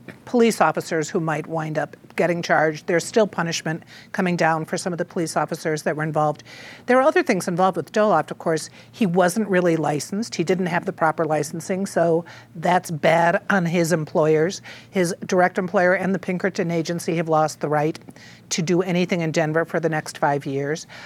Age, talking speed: 50-69, 195 wpm